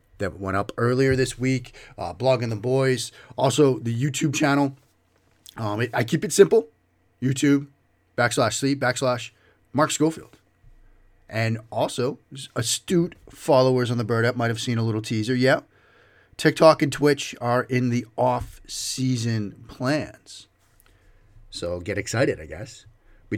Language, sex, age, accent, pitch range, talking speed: English, male, 30-49, American, 100-130 Hz, 145 wpm